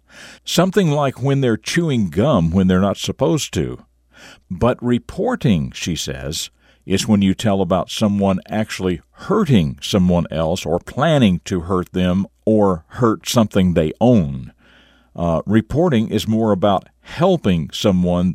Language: English